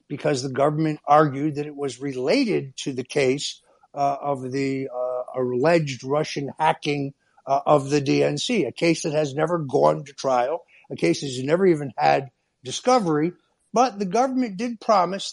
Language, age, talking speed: English, 60-79, 170 wpm